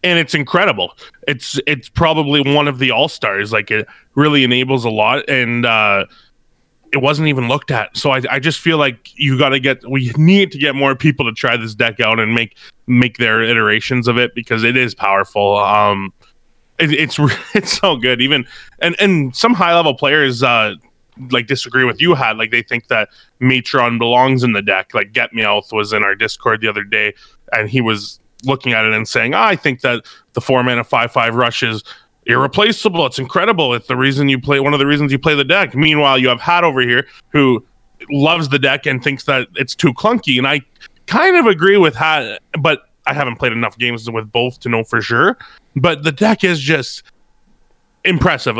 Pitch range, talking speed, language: 120-150 Hz, 210 wpm, English